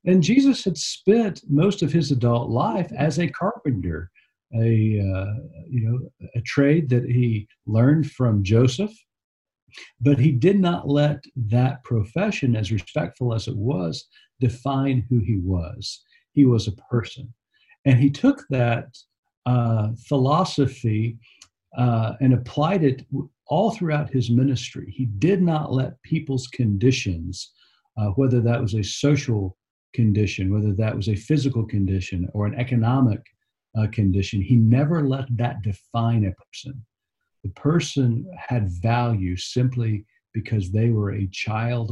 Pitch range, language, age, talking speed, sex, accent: 100-135 Hz, English, 50-69, 140 wpm, male, American